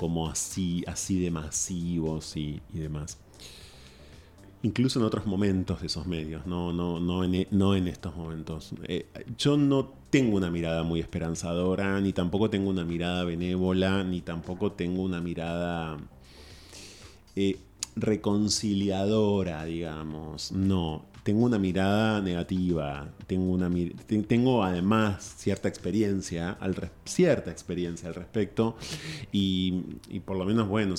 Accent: Argentinian